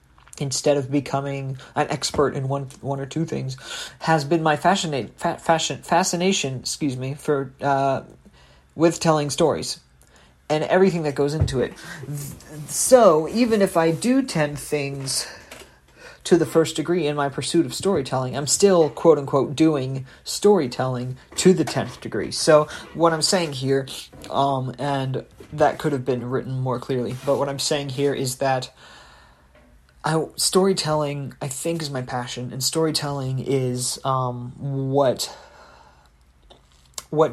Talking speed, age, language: 145 wpm, 40-59, English